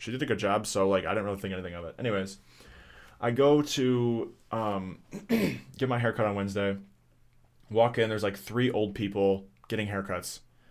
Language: English